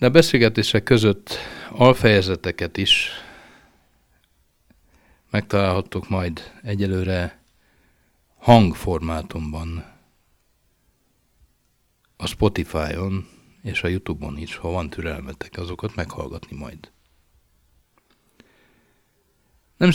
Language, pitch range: Hungarian, 85-110 Hz